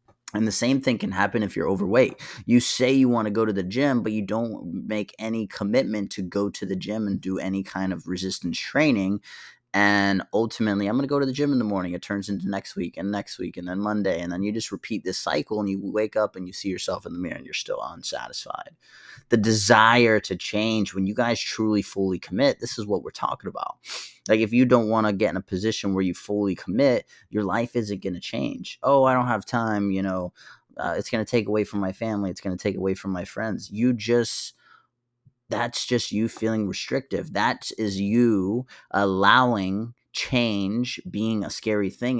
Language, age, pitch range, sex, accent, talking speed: English, 30-49, 95-115 Hz, male, American, 225 wpm